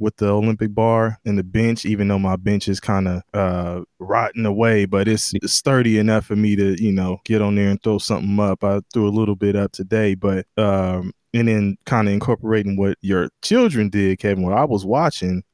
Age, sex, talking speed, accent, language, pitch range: 20-39, male, 215 wpm, American, English, 100-120 Hz